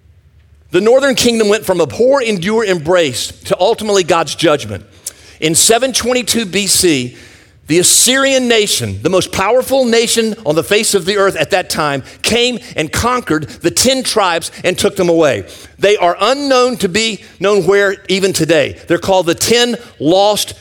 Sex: male